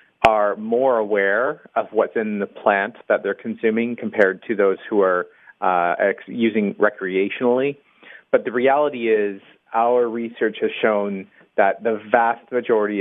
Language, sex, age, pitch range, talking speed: English, male, 30-49, 100-120 Hz, 145 wpm